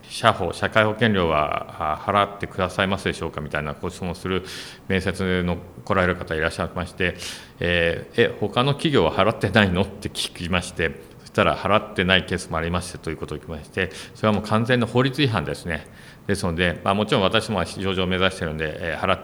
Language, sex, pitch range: Japanese, male, 85-105 Hz